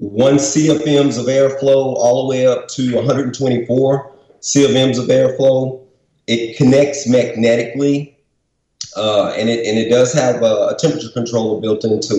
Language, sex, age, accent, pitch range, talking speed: English, male, 40-59, American, 120-140 Hz, 145 wpm